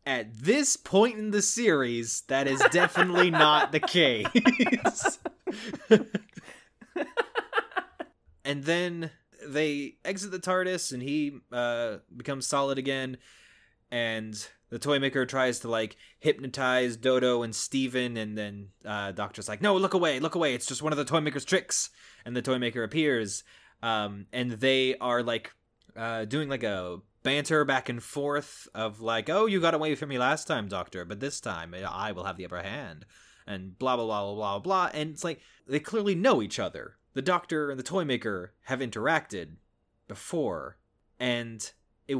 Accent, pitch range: American, 110-155 Hz